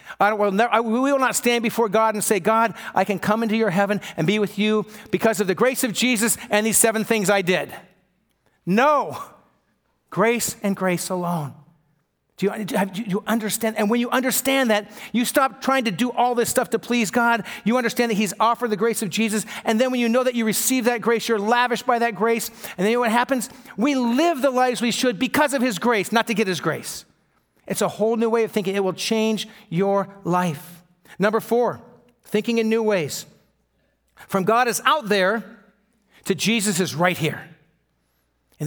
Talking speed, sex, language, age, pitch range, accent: 200 wpm, male, English, 50-69, 160-230 Hz, American